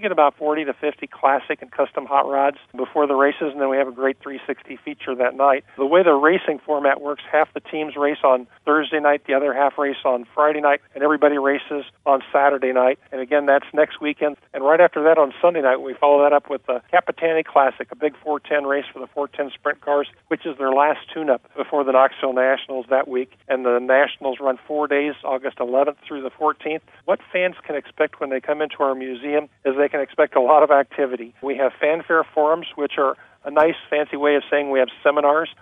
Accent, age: American, 50-69